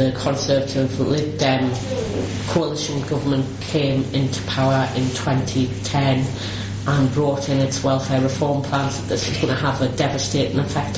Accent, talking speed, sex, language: British, 150 wpm, female, English